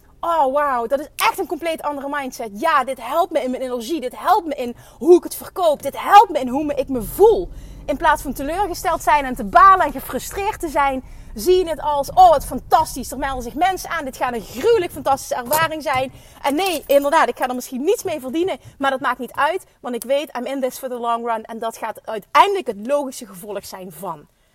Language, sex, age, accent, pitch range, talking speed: Dutch, female, 30-49, Dutch, 240-320 Hz, 235 wpm